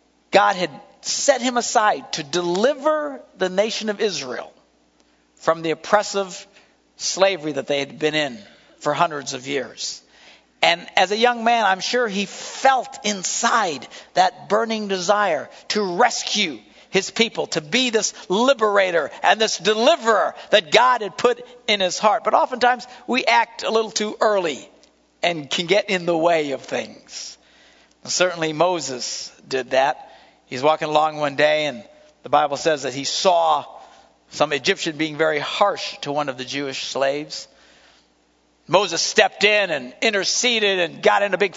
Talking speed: 155 wpm